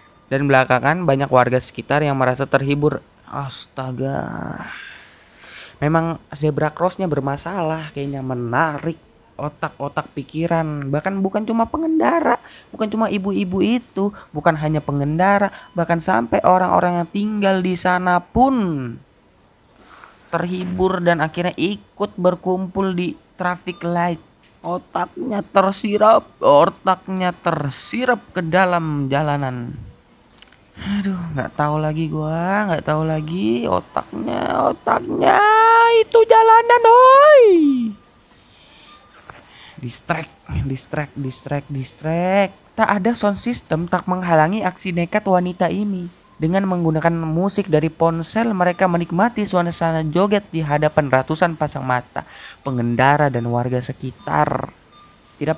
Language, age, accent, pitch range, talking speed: Indonesian, 20-39, native, 150-195 Hz, 105 wpm